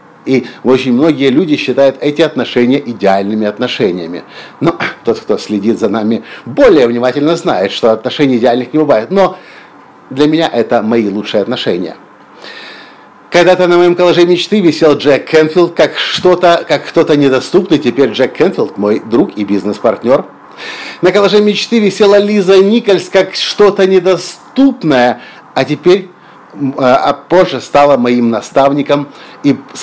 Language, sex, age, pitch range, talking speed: Russian, male, 50-69, 130-185 Hz, 135 wpm